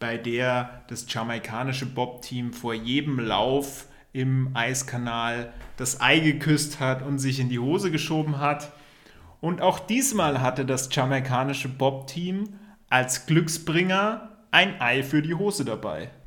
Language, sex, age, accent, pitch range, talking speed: German, male, 30-49, German, 125-160 Hz, 135 wpm